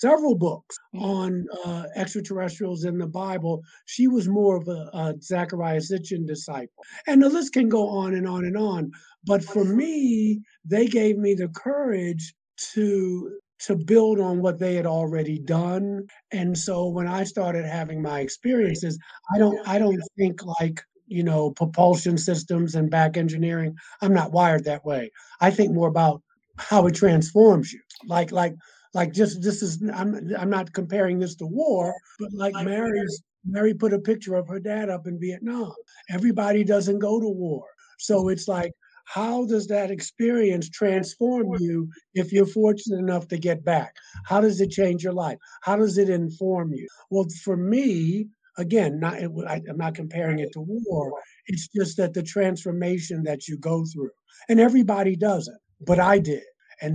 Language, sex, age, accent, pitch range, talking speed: English, male, 50-69, American, 170-210 Hz, 175 wpm